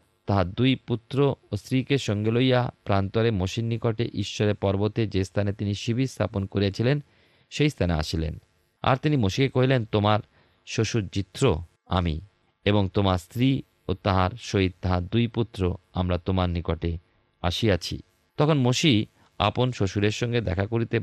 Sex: male